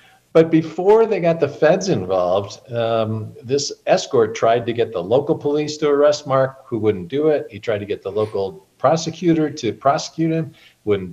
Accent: American